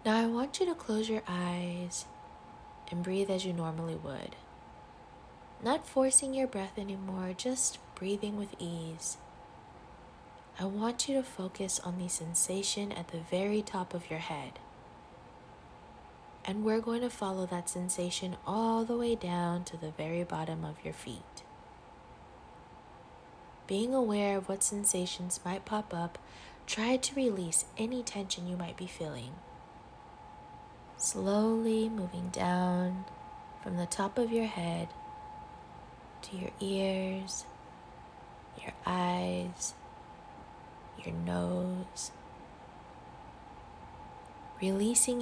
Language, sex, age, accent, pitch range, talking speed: English, female, 20-39, American, 175-225 Hz, 120 wpm